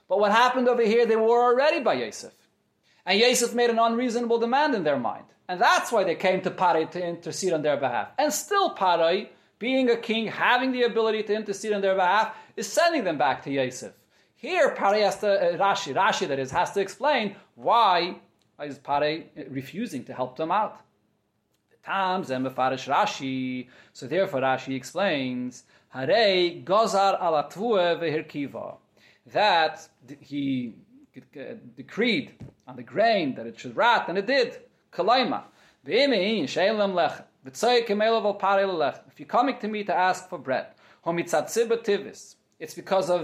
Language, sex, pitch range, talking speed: English, male, 165-235 Hz, 150 wpm